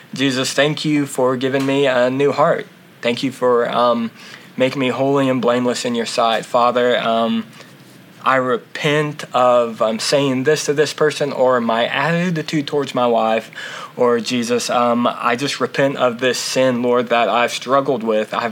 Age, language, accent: 20-39, English, American